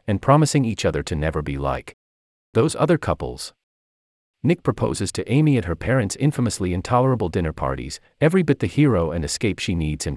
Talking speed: 185 wpm